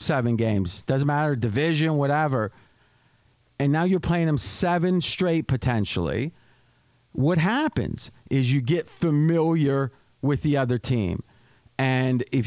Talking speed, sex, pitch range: 125 wpm, male, 125-170 Hz